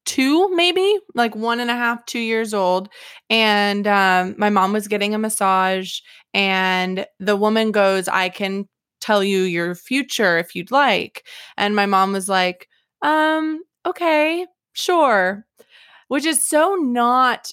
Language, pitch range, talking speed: English, 195-230 Hz, 145 wpm